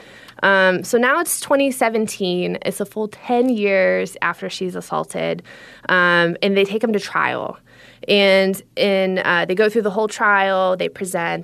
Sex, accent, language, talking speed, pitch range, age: female, American, English, 165 wpm, 180-220 Hz, 20-39